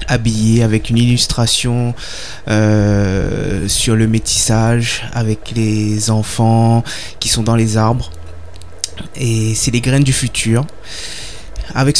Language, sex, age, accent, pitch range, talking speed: French, male, 20-39, French, 110-120 Hz, 115 wpm